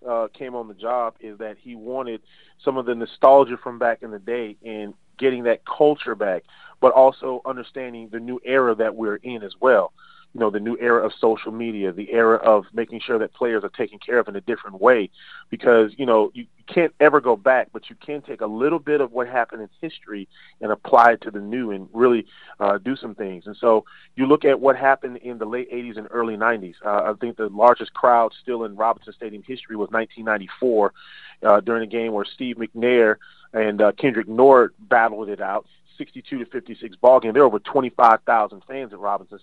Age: 30-49